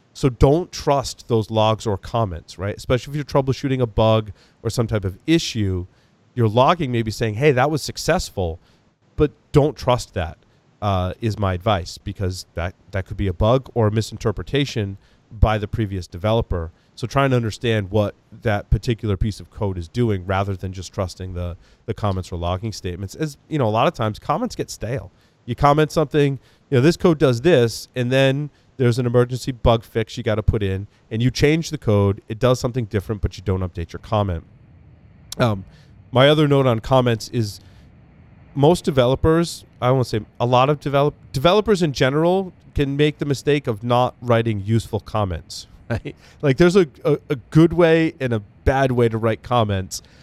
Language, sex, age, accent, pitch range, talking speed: English, male, 30-49, American, 100-135 Hz, 190 wpm